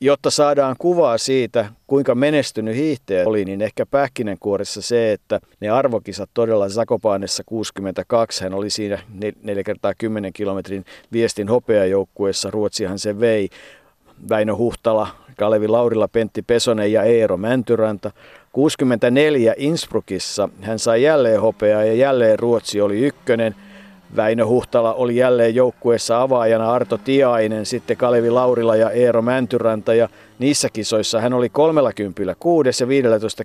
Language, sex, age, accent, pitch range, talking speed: Finnish, male, 50-69, native, 110-130 Hz, 125 wpm